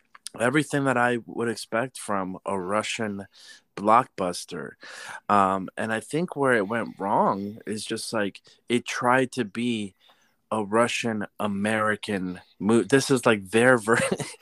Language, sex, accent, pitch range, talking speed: English, male, American, 105-125 Hz, 135 wpm